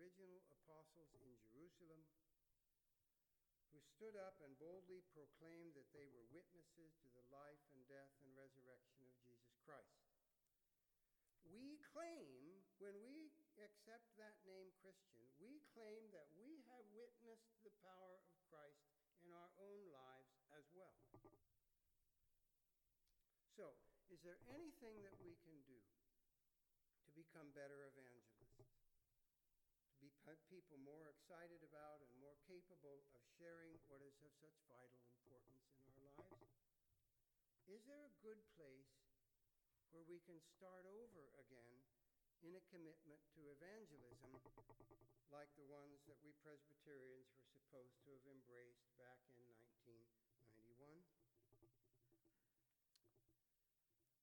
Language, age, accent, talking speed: English, 60-79, American, 120 wpm